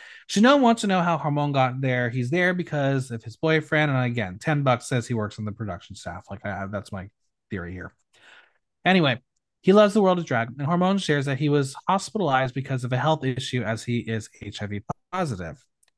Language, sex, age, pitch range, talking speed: English, male, 30-49, 115-160 Hz, 210 wpm